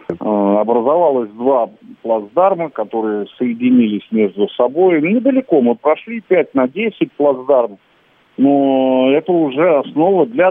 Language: Russian